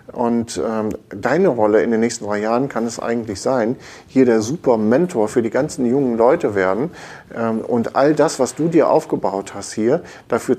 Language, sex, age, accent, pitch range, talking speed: German, male, 50-69, German, 115-140 Hz, 195 wpm